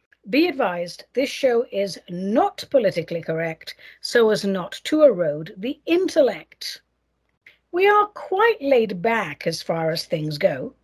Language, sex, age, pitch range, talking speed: English, female, 60-79, 185-285 Hz, 140 wpm